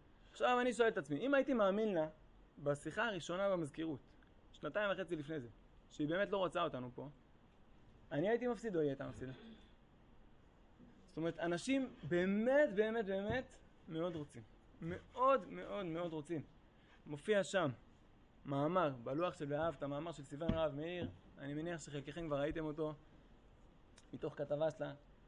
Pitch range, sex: 155-205 Hz, male